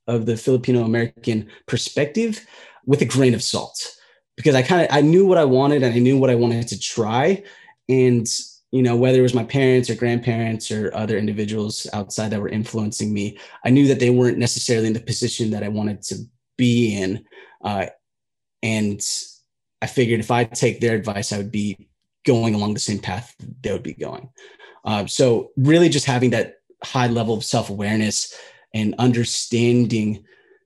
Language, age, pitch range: English, 20-39, 105-125 Hz